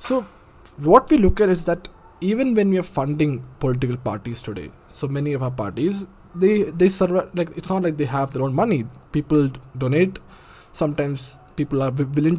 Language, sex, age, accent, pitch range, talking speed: English, male, 20-39, Indian, 135-165 Hz, 185 wpm